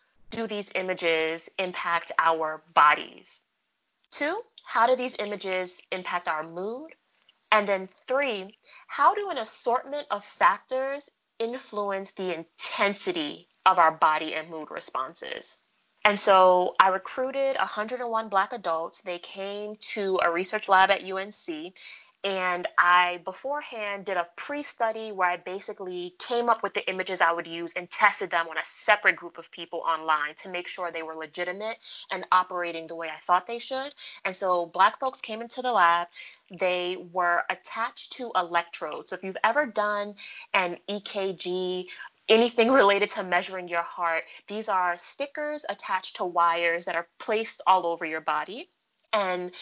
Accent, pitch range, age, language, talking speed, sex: American, 175-225 Hz, 20-39, English, 155 wpm, female